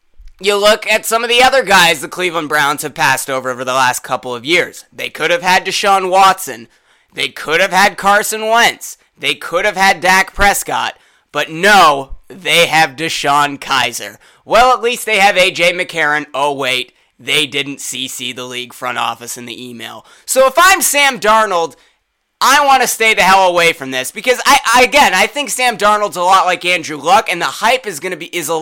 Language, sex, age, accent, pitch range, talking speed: English, male, 20-39, American, 155-210 Hz, 205 wpm